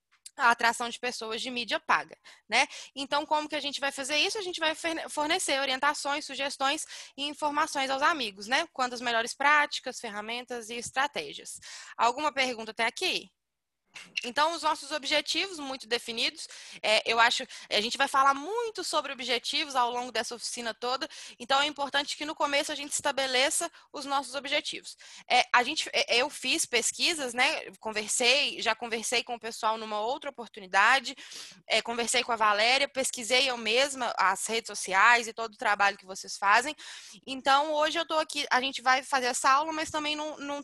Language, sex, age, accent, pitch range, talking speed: Portuguese, female, 10-29, Brazilian, 240-300 Hz, 180 wpm